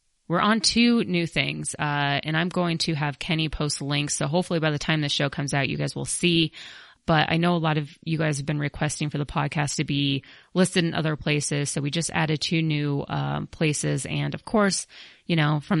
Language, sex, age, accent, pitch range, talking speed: English, female, 30-49, American, 145-170 Hz, 230 wpm